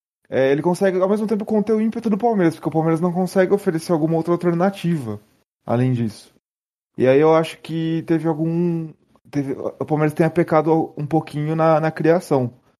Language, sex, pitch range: Portuguese, male, 135-185 Hz